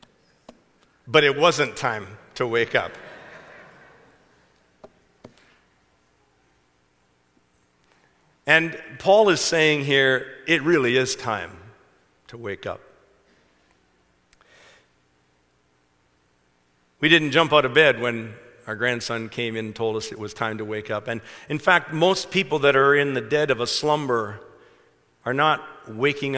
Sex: male